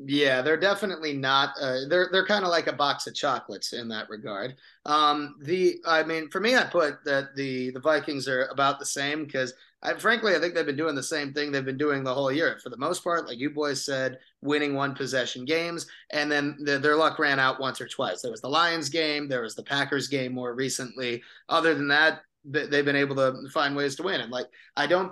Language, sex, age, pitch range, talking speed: English, male, 30-49, 130-160 Hz, 235 wpm